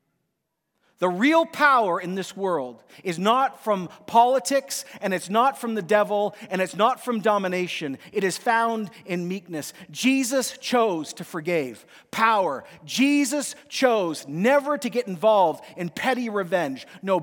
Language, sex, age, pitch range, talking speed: English, male, 40-59, 175-235 Hz, 145 wpm